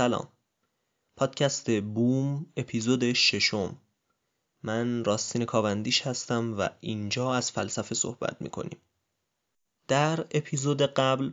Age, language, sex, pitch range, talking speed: 20-39, Persian, male, 110-135 Hz, 95 wpm